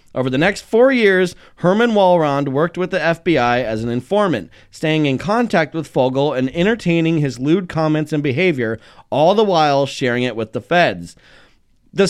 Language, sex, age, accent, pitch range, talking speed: English, male, 30-49, American, 130-175 Hz, 175 wpm